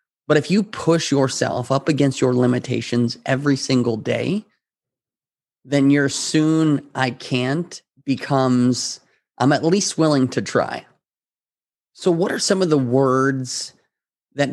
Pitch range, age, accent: 125-145 Hz, 30-49, American